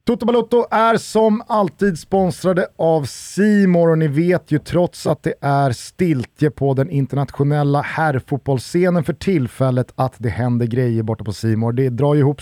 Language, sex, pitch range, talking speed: Swedish, male, 130-175 Hz, 160 wpm